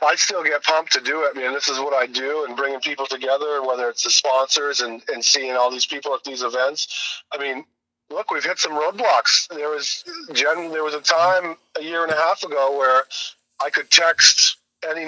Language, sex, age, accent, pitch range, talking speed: English, male, 40-59, American, 135-165 Hz, 225 wpm